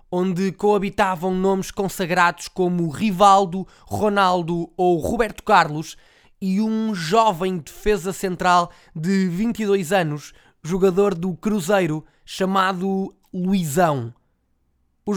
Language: Portuguese